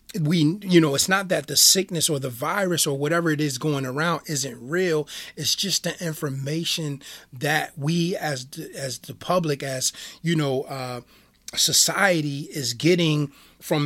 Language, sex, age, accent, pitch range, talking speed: English, male, 30-49, American, 145-175 Hz, 165 wpm